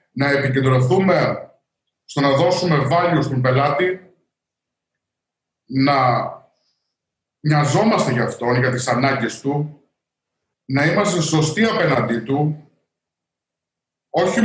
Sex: male